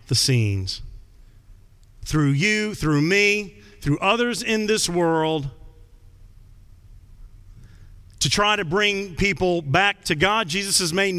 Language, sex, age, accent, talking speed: English, male, 40-59, American, 115 wpm